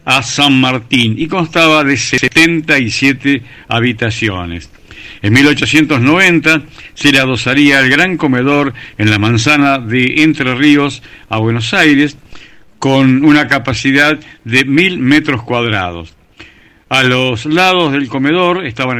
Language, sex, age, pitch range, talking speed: Spanish, male, 60-79, 115-155 Hz, 120 wpm